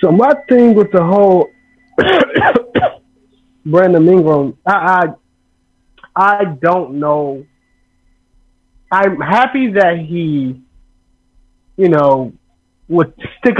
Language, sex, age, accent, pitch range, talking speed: English, male, 20-39, American, 140-185 Hz, 95 wpm